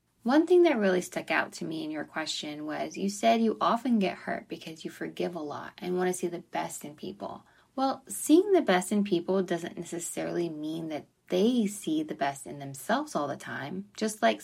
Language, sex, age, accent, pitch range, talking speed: English, female, 20-39, American, 165-220 Hz, 215 wpm